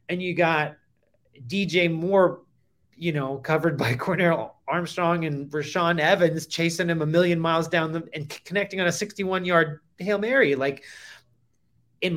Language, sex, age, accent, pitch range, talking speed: English, male, 30-49, American, 135-170 Hz, 155 wpm